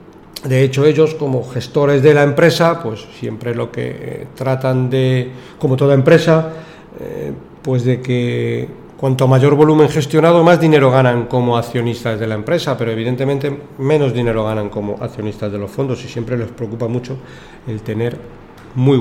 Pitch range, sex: 125-155 Hz, male